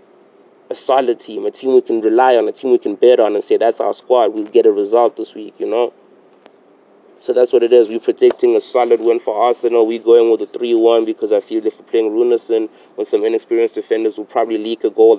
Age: 20-39